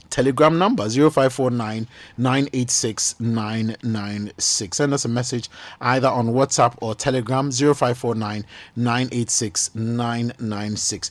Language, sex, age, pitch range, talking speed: English, male, 30-49, 110-140 Hz, 80 wpm